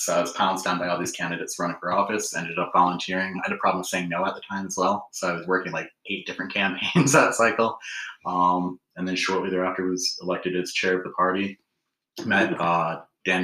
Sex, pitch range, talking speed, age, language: male, 90-95 Hz, 230 wpm, 30-49, English